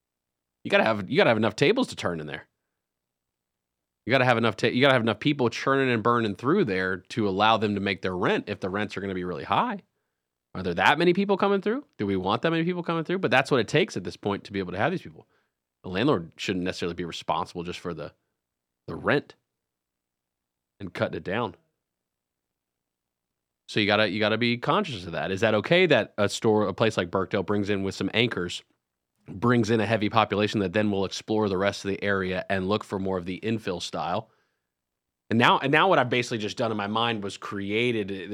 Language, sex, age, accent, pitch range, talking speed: English, male, 30-49, American, 85-110 Hz, 230 wpm